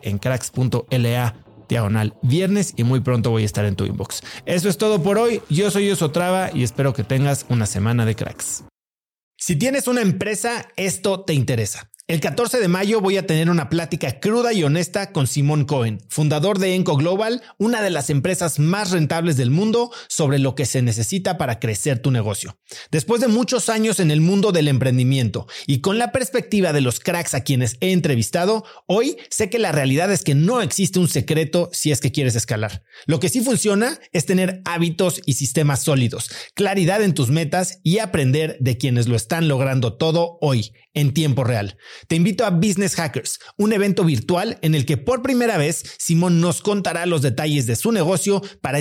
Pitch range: 130-195 Hz